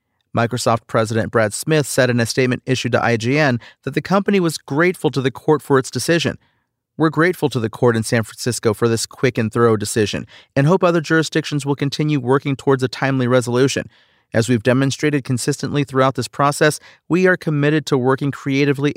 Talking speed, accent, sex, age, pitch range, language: 190 wpm, American, male, 40-59, 120-150 Hz, English